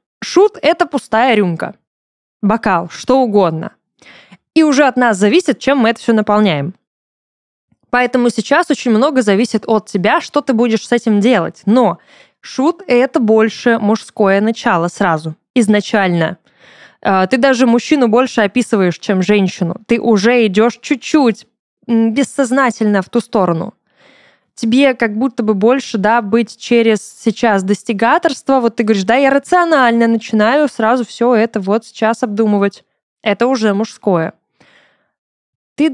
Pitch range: 210-270 Hz